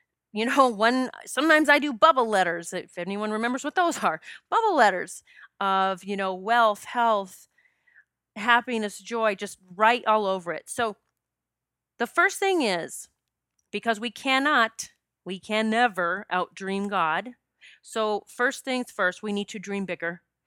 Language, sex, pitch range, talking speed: English, female, 195-250 Hz, 145 wpm